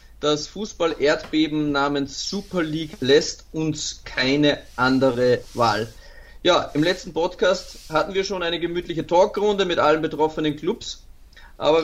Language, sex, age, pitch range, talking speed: German, male, 30-49, 145-170 Hz, 125 wpm